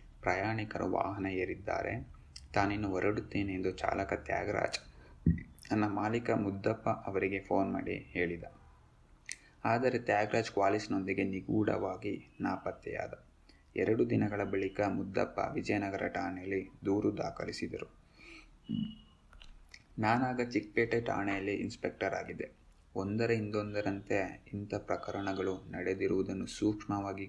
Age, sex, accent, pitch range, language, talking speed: 20-39, male, native, 95-105 Hz, Kannada, 85 wpm